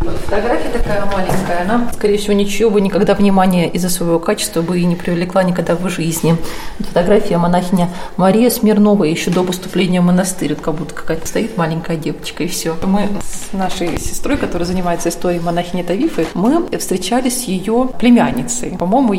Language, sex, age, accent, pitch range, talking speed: Russian, female, 30-49, native, 175-210 Hz, 165 wpm